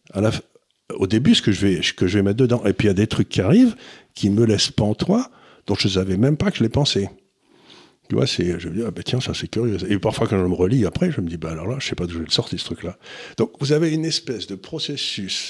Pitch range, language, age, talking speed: 95-130 Hz, French, 60-79, 315 wpm